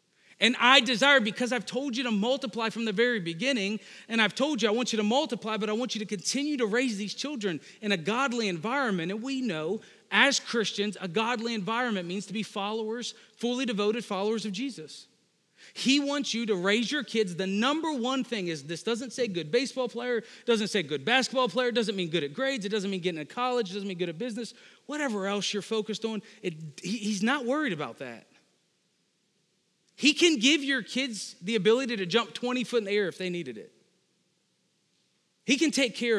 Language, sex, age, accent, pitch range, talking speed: English, male, 40-59, American, 195-245 Hz, 205 wpm